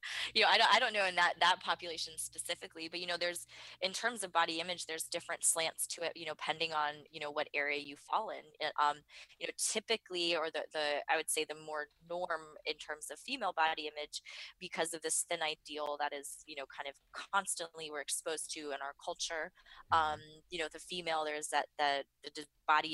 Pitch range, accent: 145-165 Hz, American